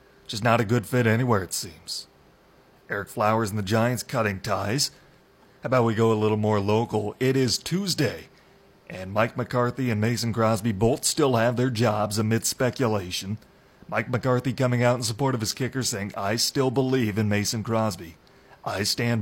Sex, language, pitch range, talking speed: male, English, 105-125 Hz, 180 wpm